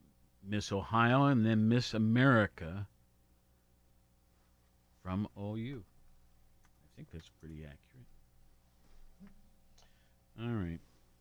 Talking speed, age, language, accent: 80 wpm, 50-69, English, American